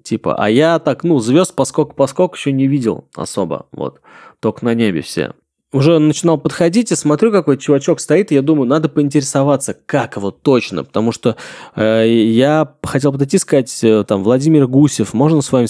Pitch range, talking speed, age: 115-155 Hz, 170 wpm, 20-39